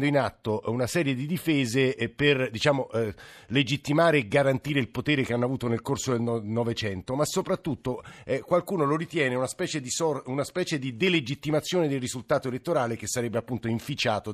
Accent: native